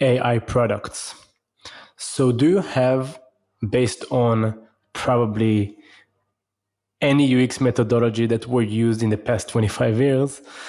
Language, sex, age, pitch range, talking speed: English, male, 20-39, 115-135 Hz, 110 wpm